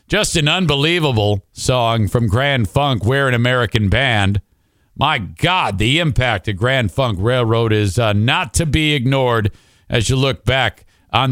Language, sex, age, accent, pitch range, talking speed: English, male, 50-69, American, 110-145 Hz, 160 wpm